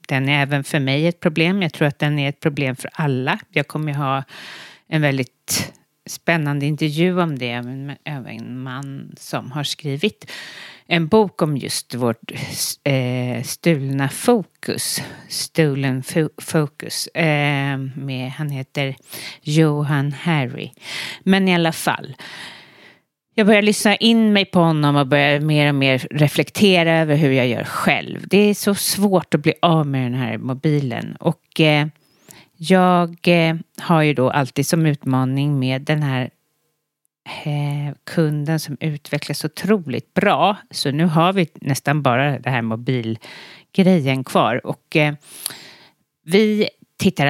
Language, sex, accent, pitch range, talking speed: English, female, Swedish, 135-170 Hz, 140 wpm